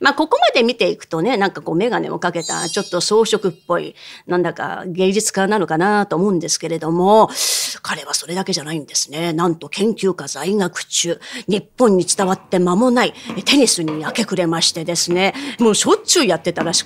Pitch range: 180-255 Hz